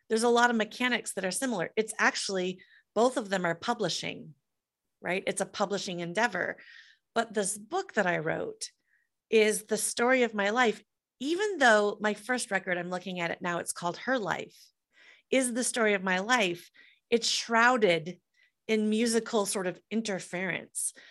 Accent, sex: American, female